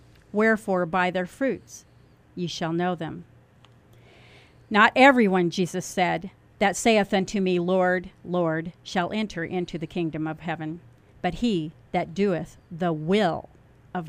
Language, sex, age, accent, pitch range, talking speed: English, female, 40-59, American, 170-205 Hz, 135 wpm